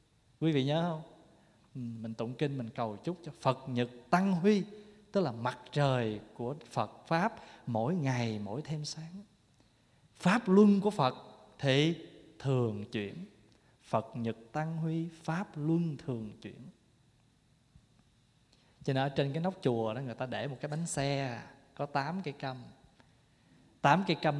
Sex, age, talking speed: male, 20-39, 155 wpm